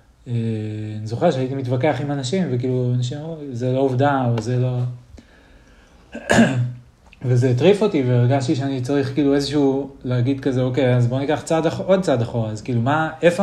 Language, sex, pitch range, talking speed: Hebrew, male, 110-130 Hz, 165 wpm